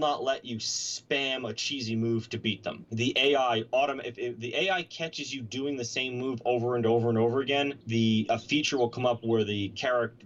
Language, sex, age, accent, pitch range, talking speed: English, male, 30-49, American, 105-130 Hz, 220 wpm